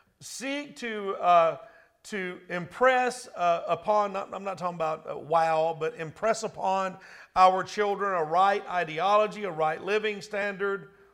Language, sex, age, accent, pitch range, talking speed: English, male, 50-69, American, 175-215 Hz, 140 wpm